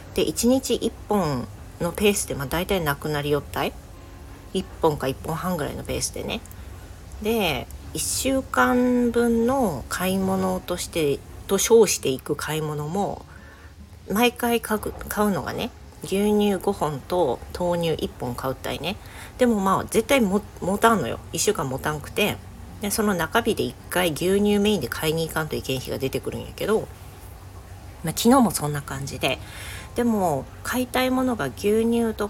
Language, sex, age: Japanese, female, 40-59